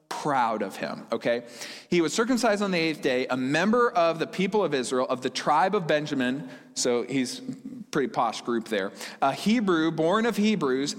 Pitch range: 140-195 Hz